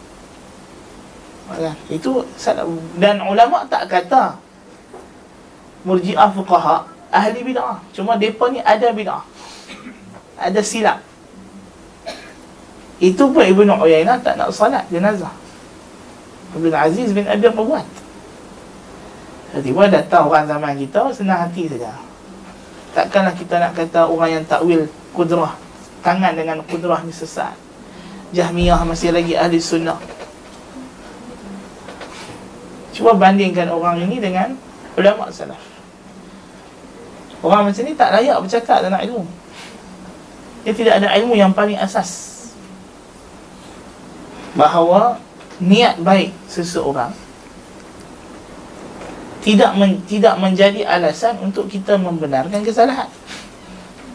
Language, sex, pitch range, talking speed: Malay, male, 170-210 Hz, 100 wpm